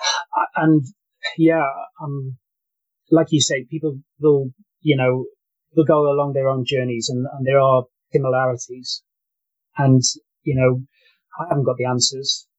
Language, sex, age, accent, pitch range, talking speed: English, male, 30-49, British, 125-160 Hz, 140 wpm